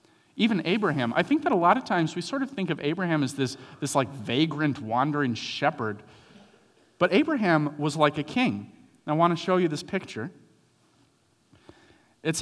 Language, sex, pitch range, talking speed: English, male, 130-185 Hz, 180 wpm